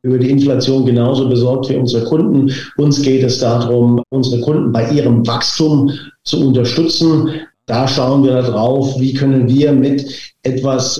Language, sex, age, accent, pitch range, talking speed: German, male, 50-69, German, 125-145 Hz, 155 wpm